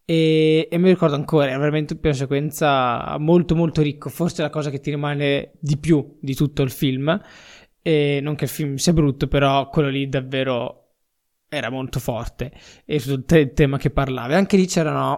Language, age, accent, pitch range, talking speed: Italian, 20-39, native, 140-165 Hz, 185 wpm